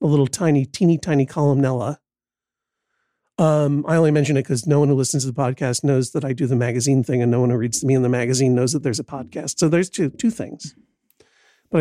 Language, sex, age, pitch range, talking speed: English, male, 50-69, 130-165 Hz, 240 wpm